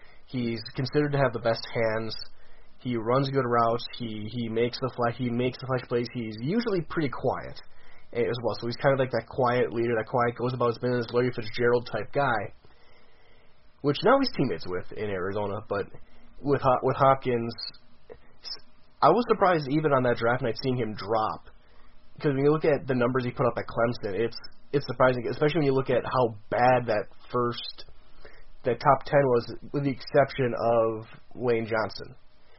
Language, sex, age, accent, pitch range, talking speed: English, male, 20-39, American, 115-130 Hz, 185 wpm